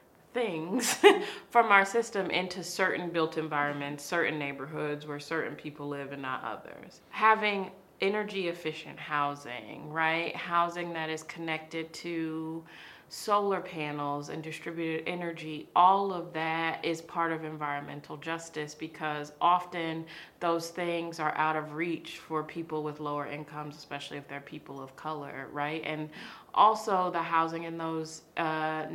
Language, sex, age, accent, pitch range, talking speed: English, female, 30-49, American, 150-175 Hz, 140 wpm